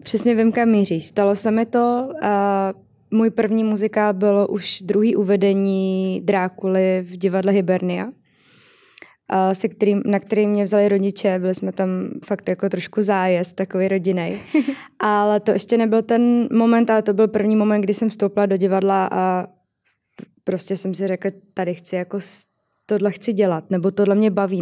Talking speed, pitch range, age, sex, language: 155 wpm, 190-220 Hz, 20-39, female, Czech